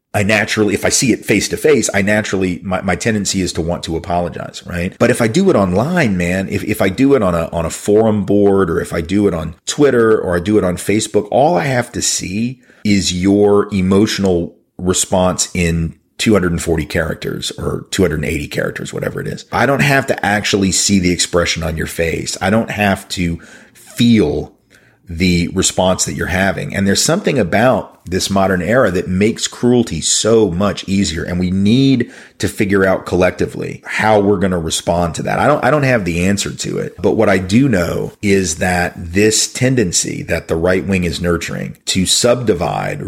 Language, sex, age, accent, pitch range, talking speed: English, male, 40-59, American, 85-105 Hz, 195 wpm